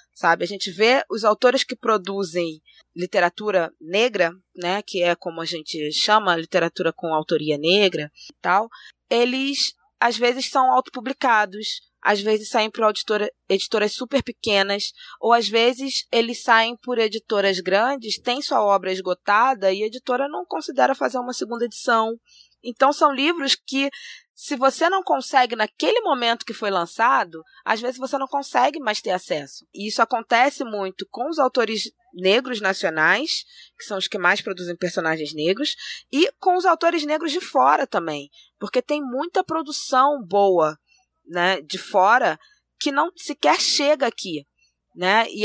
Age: 20-39